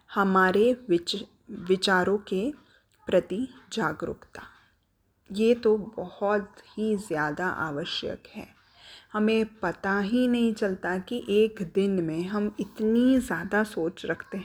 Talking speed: 110 wpm